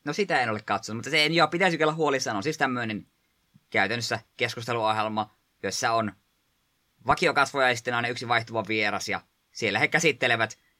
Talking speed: 155 wpm